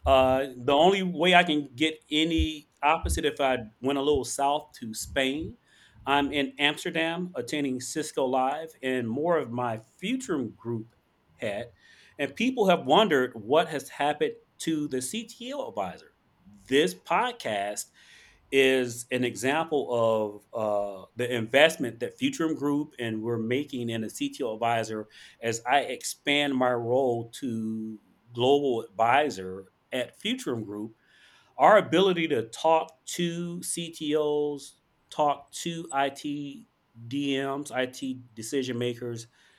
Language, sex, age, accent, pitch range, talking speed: English, male, 40-59, American, 120-170 Hz, 125 wpm